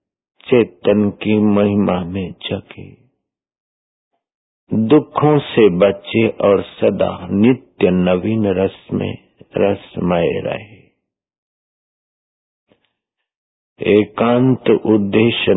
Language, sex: Hindi, male